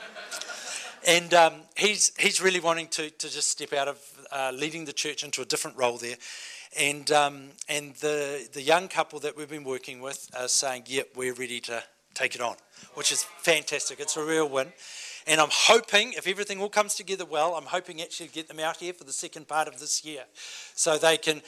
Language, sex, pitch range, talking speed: English, male, 150-195 Hz, 210 wpm